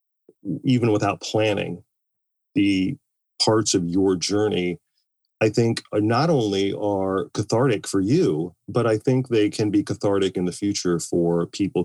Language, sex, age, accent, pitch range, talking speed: English, male, 40-59, American, 95-110 Hz, 145 wpm